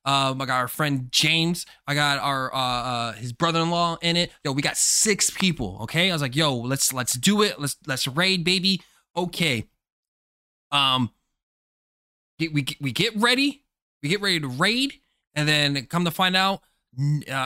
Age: 20-39